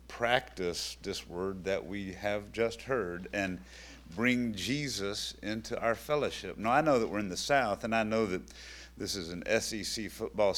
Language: English